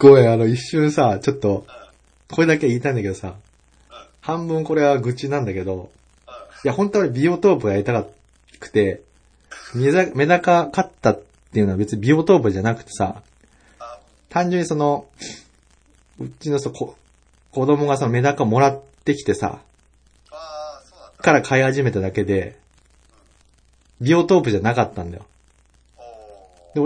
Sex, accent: male, native